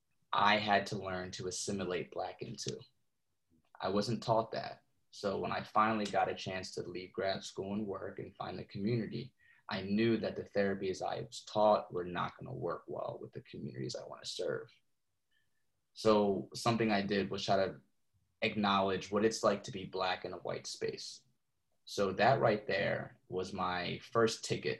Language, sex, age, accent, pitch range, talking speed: English, male, 20-39, American, 95-110 Hz, 180 wpm